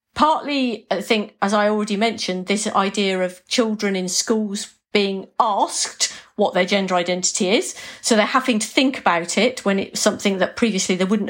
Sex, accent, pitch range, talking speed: female, British, 190-235 Hz, 180 wpm